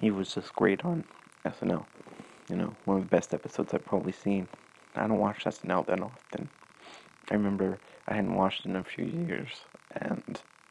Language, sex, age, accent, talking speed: English, male, 30-49, American, 185 wpm